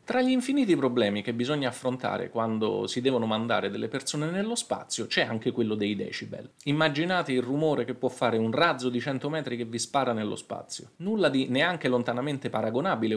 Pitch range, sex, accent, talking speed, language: 115-170 Hz, male, native, 185 wpm, Italian